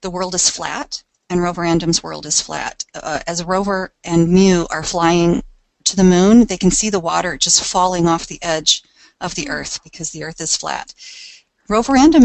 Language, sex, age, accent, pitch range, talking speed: English, female, 40-59, American, 165-210 Hz, 185 wpm